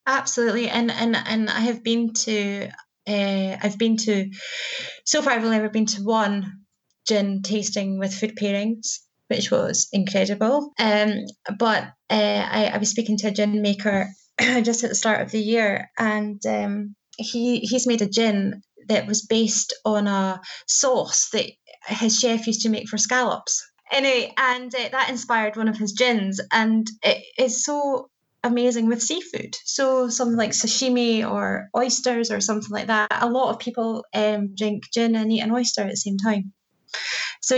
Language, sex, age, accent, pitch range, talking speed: English, female, 20-39, British, 205-240 Hz, 175 wpm